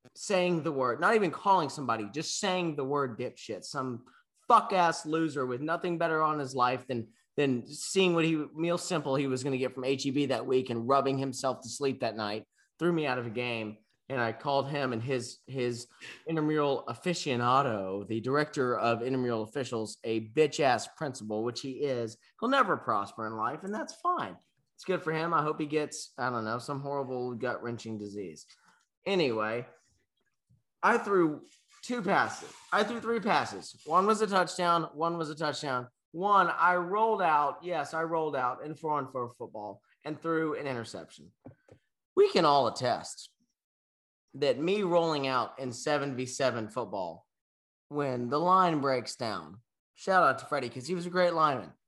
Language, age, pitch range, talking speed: English, 30-49, 120-165 Hz, 175 wpm